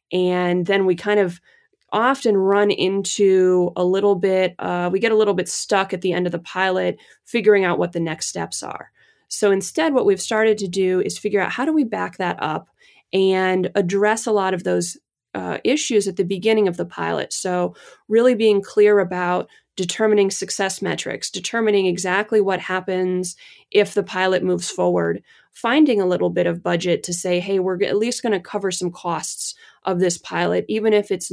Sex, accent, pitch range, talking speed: female, American, 180-215 Hz, 195 wpm